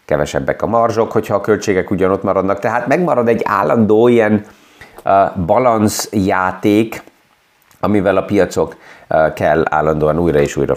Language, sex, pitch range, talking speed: Hungarian, male, 95-115 Hz, 130 wpm